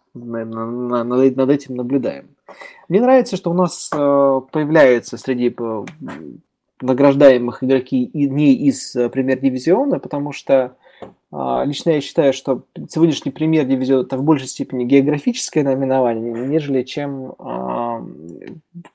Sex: male